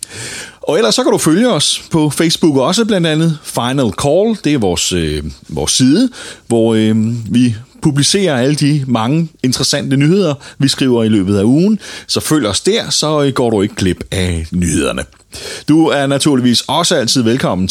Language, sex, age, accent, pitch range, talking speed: Danish, male, 30-49, native, 95-150 Hz, 180 wpm